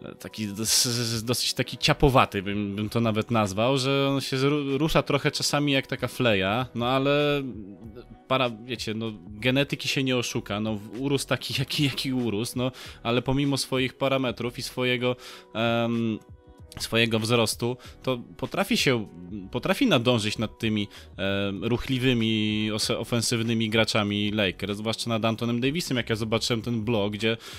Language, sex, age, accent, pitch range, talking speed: Polish, male, 20-39, native, 115-140 Hz, 150 wpm